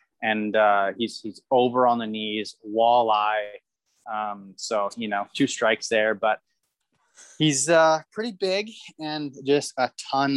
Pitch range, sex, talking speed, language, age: 105-125 Hz, male, 145 wpm, English, 20-39